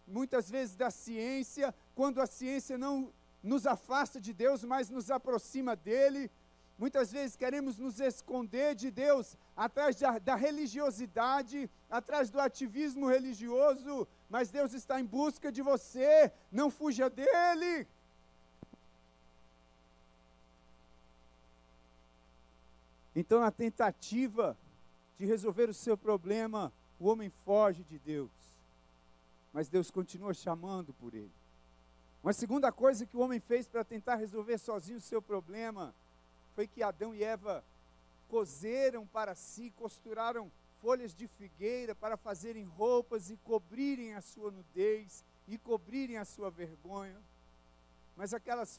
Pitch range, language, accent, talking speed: 180-255 Hz, Portuguese, Brazilian, 125 wpm